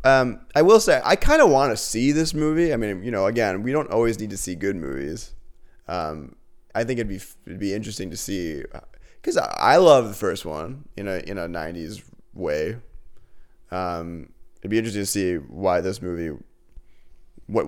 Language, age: English, 20-39